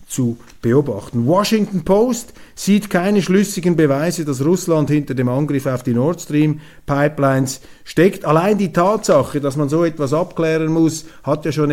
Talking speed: 160 wpm